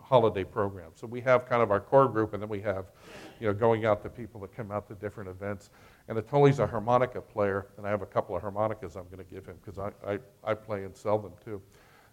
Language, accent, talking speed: English, American, 255 wpm